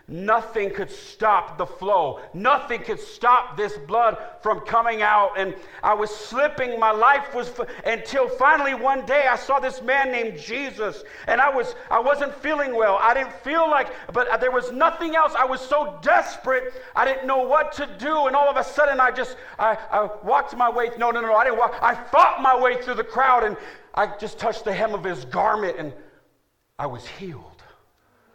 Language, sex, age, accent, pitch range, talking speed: English, male, 50-69, American, 160-270 Hz, 200 wpm